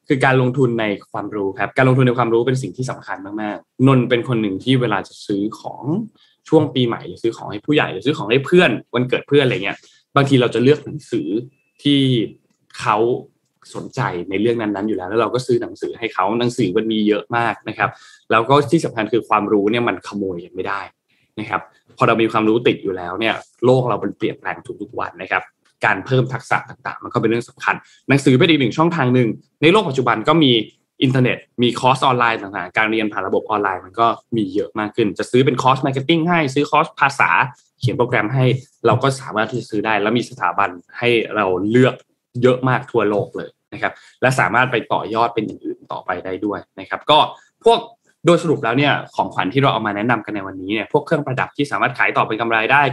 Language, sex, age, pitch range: Thai, male, 20-39, 110-140 Hz